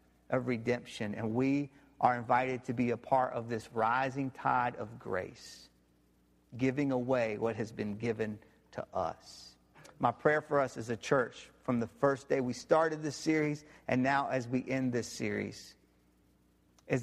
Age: 50-69